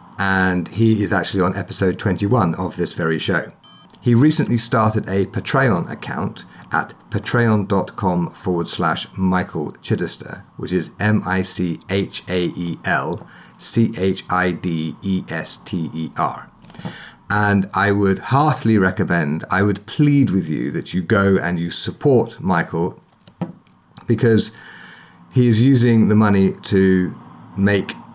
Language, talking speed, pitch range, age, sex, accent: English, 110 wpm, 90-110 Hz, 30-49, male, British